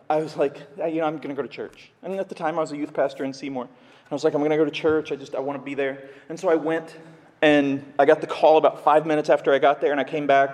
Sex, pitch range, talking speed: male, 155-190 Hz, 340 wpm